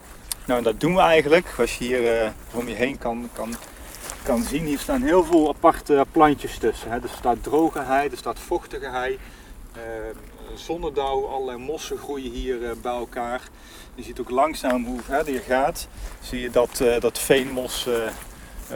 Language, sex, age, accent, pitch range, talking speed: Dutch, male, 30-49, Dutch, 115-140 Hz, 180 wpm